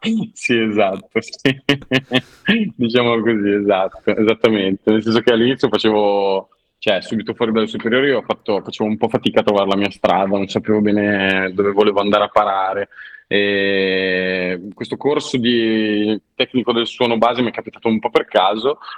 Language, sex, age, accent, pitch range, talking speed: Italian, male, 20-39, native, 95-115 Hz, 165 wpm